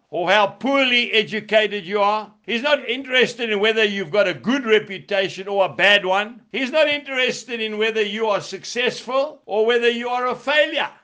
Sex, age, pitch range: male, 60-79, 180-240 Hz